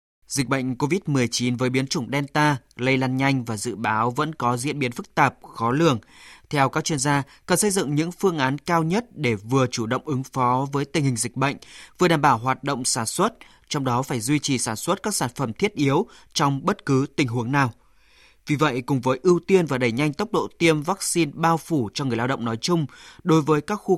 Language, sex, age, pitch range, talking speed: Vietnamese, male, 20-39, 130-170 Hz, 235 wpm